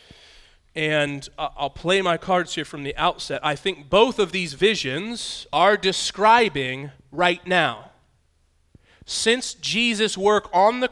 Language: English